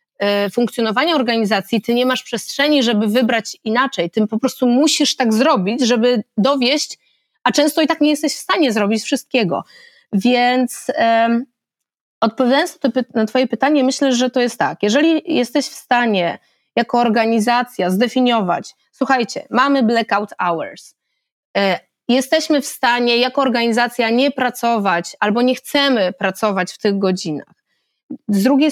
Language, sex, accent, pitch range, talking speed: Polish, female, native, 220-270 Hz, 135 wpm